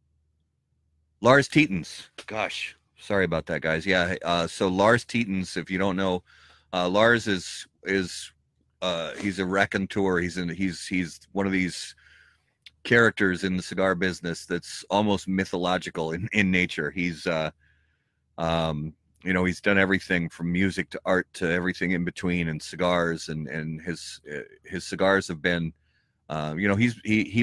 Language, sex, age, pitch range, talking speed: English, male, 30-49, 80-95 Hz, 155 wpm